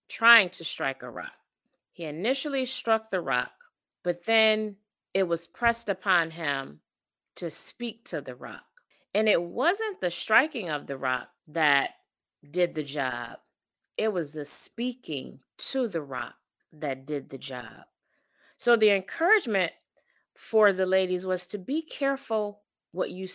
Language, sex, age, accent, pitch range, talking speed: English, female, 40-59, American, 170-230 Hz, 145 wpm